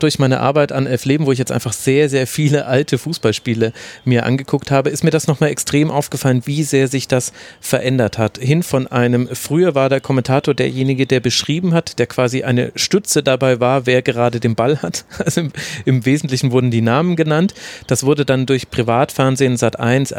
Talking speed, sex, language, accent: 195 wpm, male, German, German